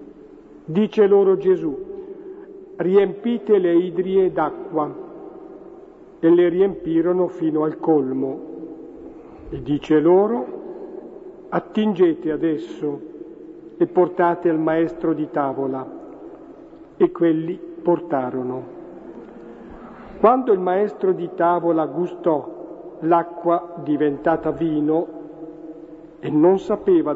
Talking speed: 85 wpm